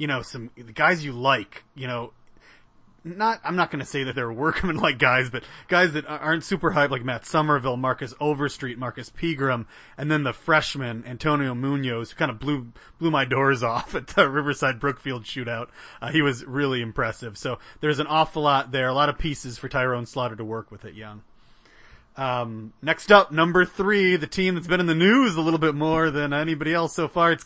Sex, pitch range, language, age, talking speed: male, 130-160 Hz, English, 30-49, 210 wpm